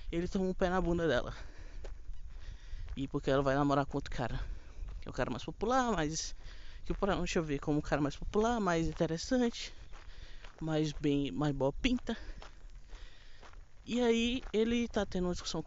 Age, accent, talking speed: 20-39, Brazilian, 170 wpm